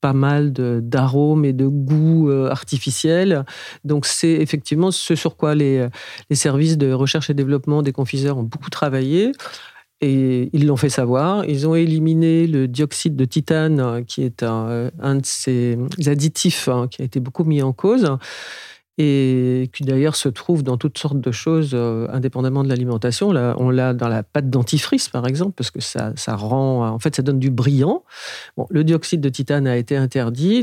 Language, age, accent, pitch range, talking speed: French, 50-69, French, 130-160 Hz, 190 wpm